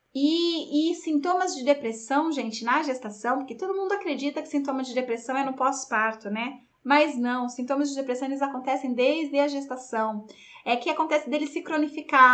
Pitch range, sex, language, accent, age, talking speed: 235-310 Hz, female, Portuguese, Brazilian, 20-39, 175 wpm